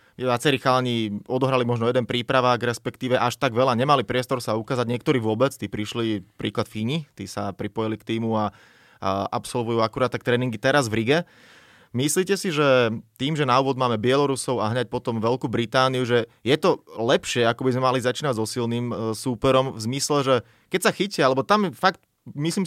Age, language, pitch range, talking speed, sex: 20-39, Slovak, 115-155 Hz, 185 wpm, male